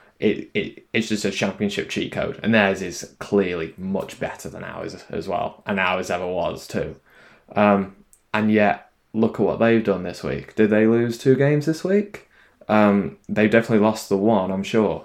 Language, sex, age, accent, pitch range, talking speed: English, male, 10-29, British, 100-125 Hz, 190 wpm